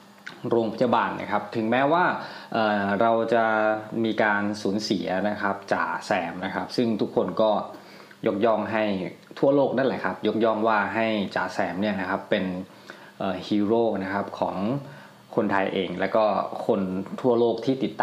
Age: 20-39